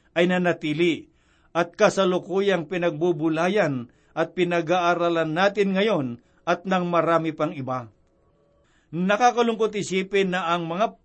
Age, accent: 50-69, native